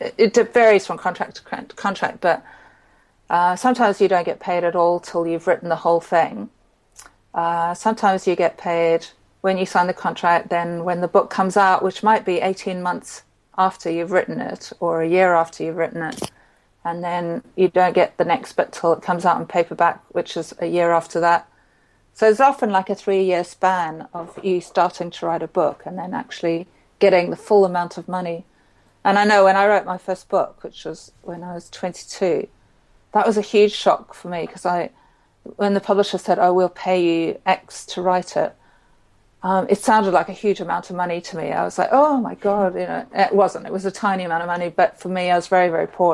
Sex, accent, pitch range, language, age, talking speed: female, British, 175-195 Hz, English, 40-59, 220 wpm